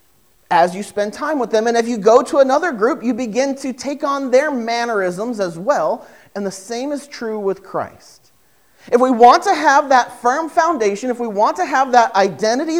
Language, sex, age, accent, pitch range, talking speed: English, male, 40-59, American, 205-280 Hz, 205 wpm